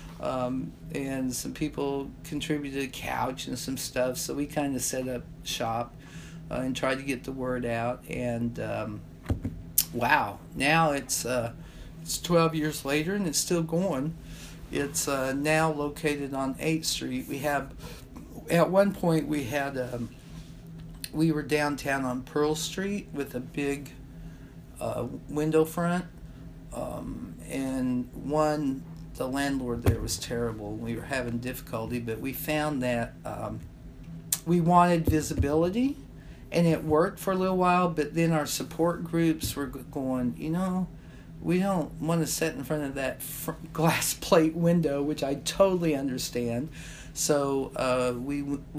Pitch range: 130-160 Hz